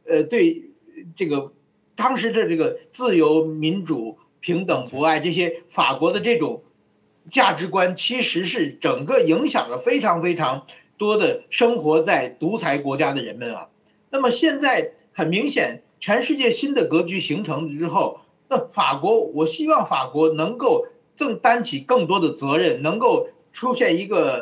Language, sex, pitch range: Chinese, male, 170-275 Hz